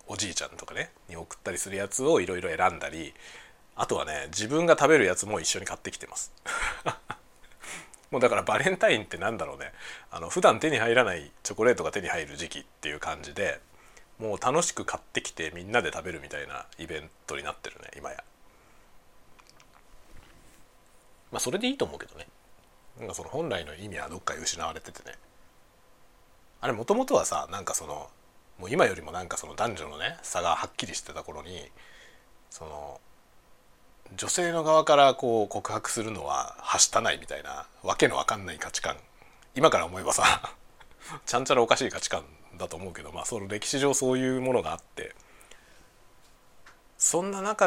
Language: Japanese